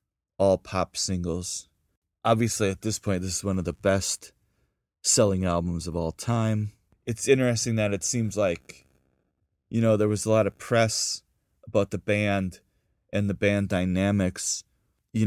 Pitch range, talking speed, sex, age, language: 95-115 Hz, 155 wpm, male, 30-49, English